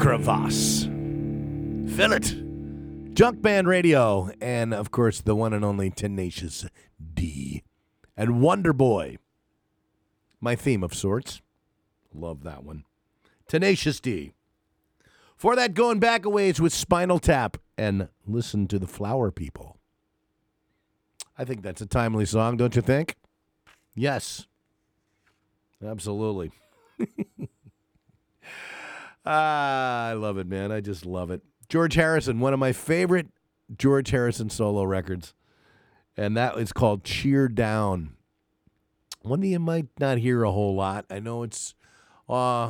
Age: 50-69